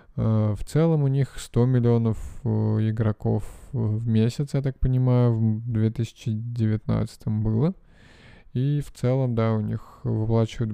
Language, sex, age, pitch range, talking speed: Russian, male, 20-39, 110-125 Hz, 125 wpm